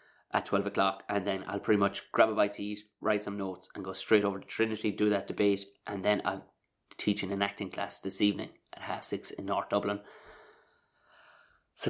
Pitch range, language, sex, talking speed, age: 105-170 Hz, English, male, 205 wpm, 20-39